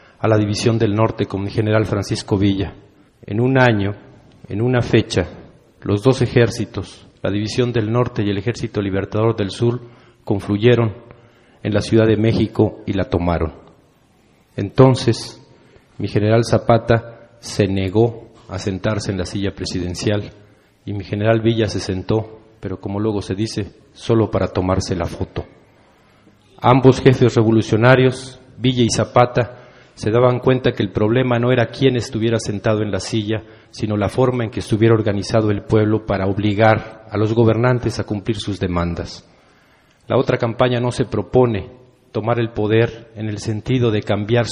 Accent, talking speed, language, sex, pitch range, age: Mexican, 160 wpm, Spanish, male, 105-120 Hz, 40-59